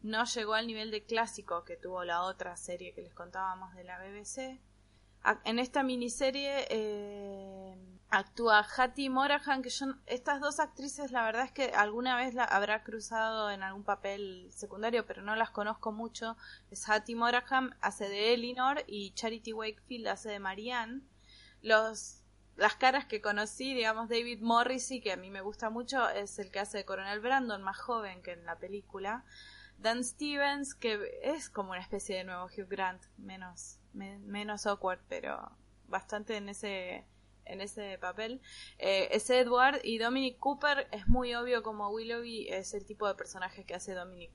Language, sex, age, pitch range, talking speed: Spanish, female, 20-39, 200-250 Hz, 170 wpm